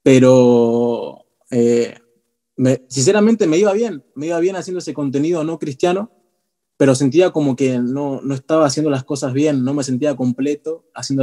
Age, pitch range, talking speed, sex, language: 20-39, 120-145 Hz, 165 wpm, male, Spanish